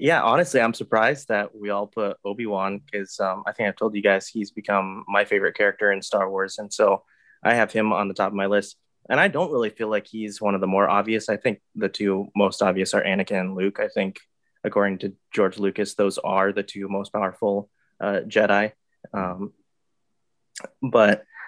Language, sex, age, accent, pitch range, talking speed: English, male, 20-39, American, 100-110 Hz, 205 wpm